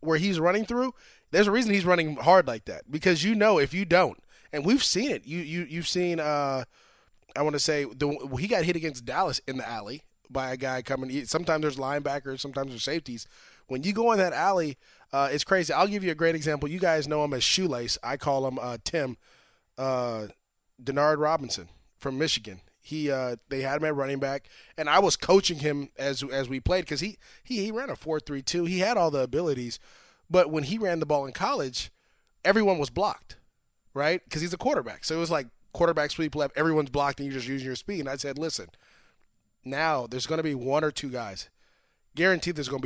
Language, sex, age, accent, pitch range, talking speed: English, male, 20-39, American, 130-165 Hz, 225 wpm